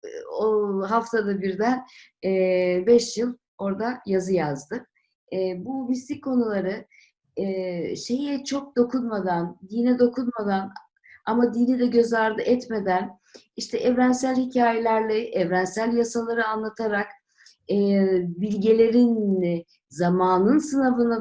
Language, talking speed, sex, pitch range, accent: Turkish, 90 wpm, female, 200-245 Hz, native